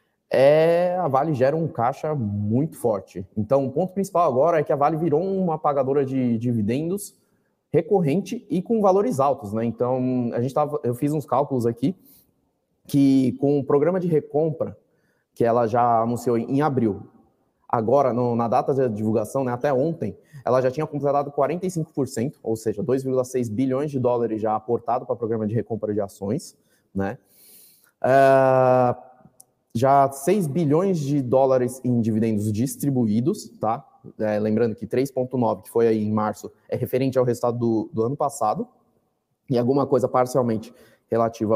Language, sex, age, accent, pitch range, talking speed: Portuguese, male, 20-39, Brazilian, 115-145 Hz, 160 wpm